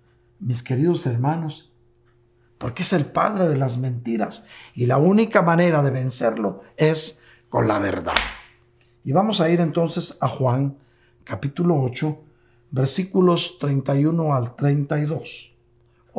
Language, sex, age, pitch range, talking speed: Spanish, male, 60-79, 130-175 Hz, 120 wpm